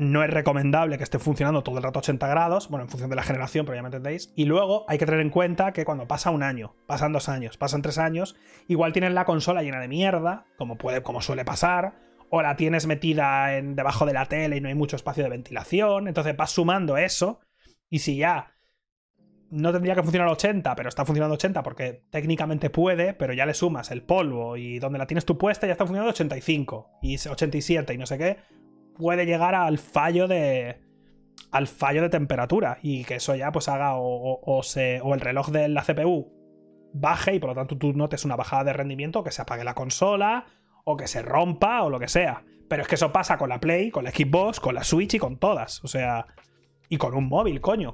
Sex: male